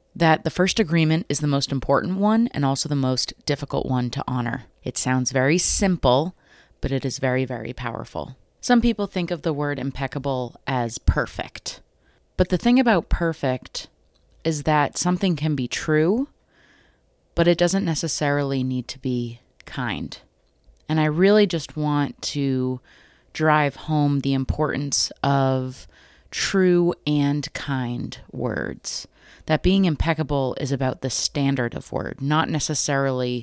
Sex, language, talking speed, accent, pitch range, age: female, English, 145 wpm, American, 130-165 Hz, 30-49